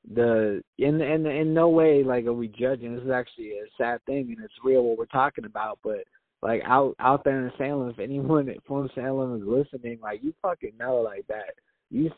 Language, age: English, 20-39